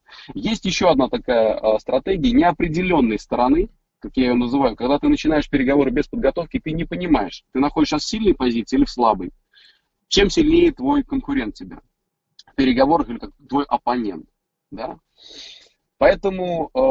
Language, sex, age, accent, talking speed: Russian, male, 30-49, native, 155 wpm